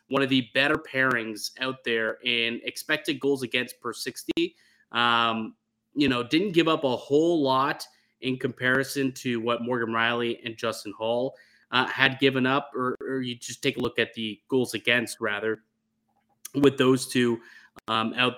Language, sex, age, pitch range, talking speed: English, male, 30-49, 115-140 Hz, 170 wpm